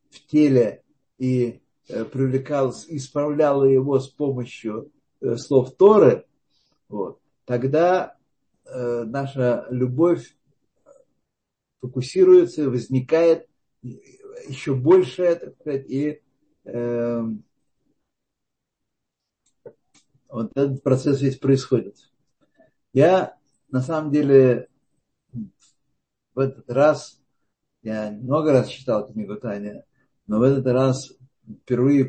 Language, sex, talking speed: Russian, male, 85 wpm